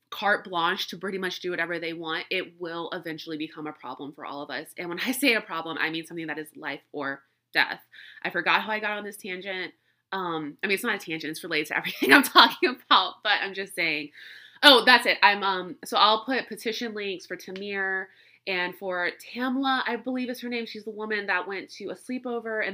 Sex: female